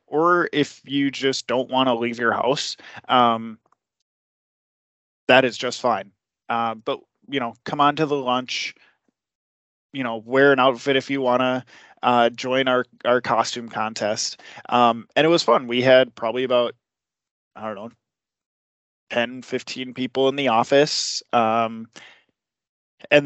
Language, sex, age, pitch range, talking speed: English, male, 20-39, 115-135 Hz, 155 wpm